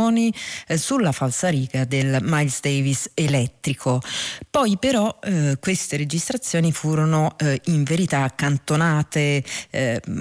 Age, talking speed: 40-59, 100 wpm